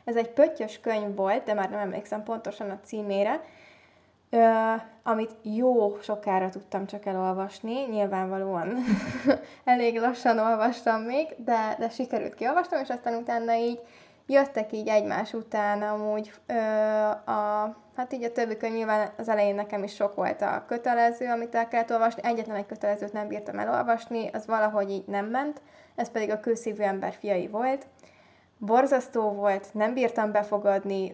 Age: 20-39